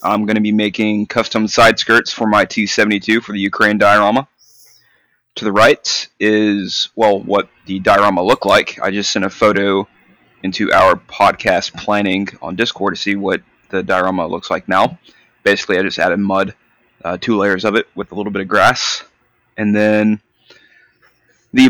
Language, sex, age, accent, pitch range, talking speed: English, male, 20-39, American, 100-115 Hz, 175 wpm